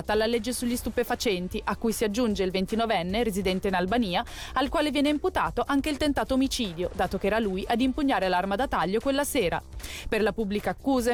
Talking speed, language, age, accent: 195 wpm, Italian, 30-49, native